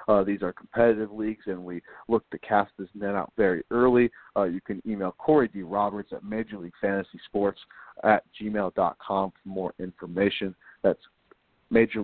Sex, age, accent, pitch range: male, 40-59, American, 100-110 Hz